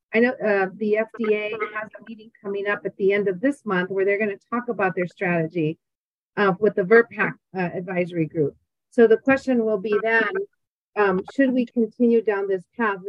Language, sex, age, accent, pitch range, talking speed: English, female, 40-59, American, 195-245 Hz, 200 wpm